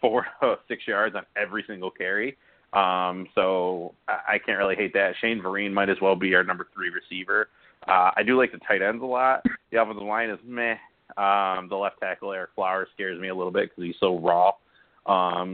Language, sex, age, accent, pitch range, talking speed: English, male, 30-49, American, 95-110 Hz, 210 wpm